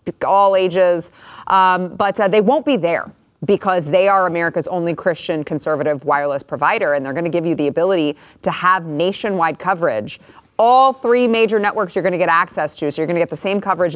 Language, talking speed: English, 205 wpm